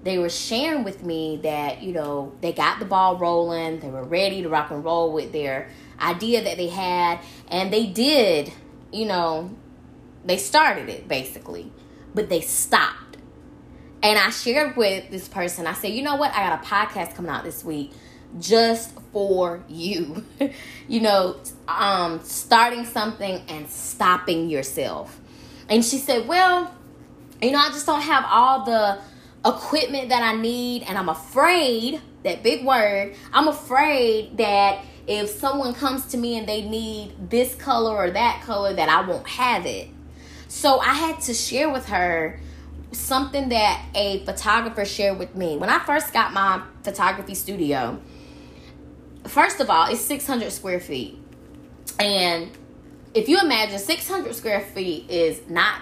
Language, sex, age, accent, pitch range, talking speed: English, female, 10-29, American, 170-245 Hz, 160 wpm